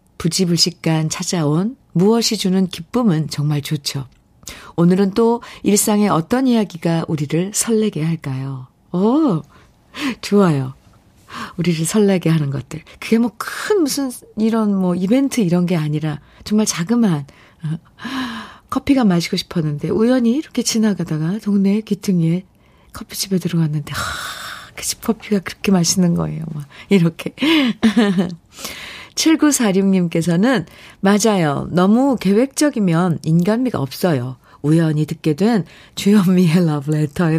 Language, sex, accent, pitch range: Korean, female, native, 155-215 Hz